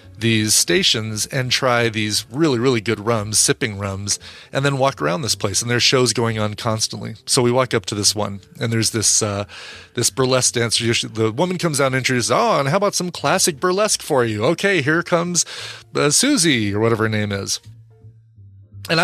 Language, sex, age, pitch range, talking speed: English, male, 30-49, 110-135 Hz, 200 wpm